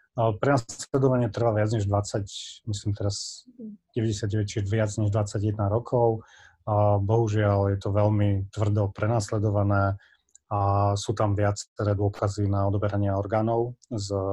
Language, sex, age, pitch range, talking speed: Slovak, male, 30-49, 105-120 Hz, 130 wpm